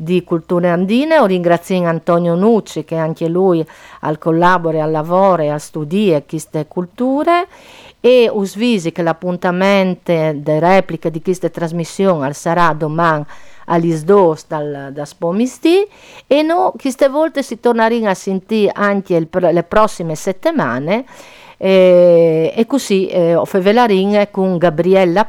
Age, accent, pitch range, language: 50-69, native, 165-215 Hz, Italian